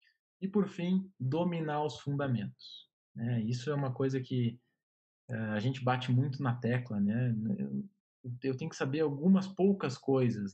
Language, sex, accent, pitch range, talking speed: Portuguese, male, Brazilian, 115-140 Hz, 150 wpm